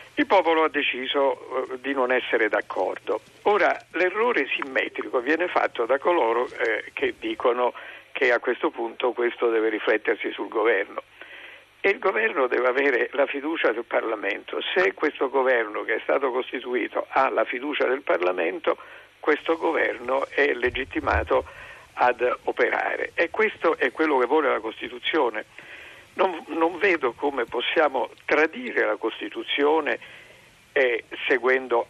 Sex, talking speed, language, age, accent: male, 135 wpm, Italian, 50-69, native